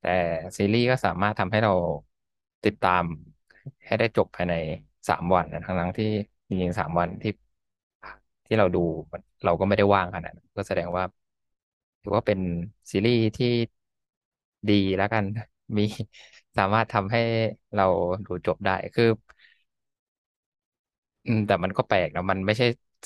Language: Thai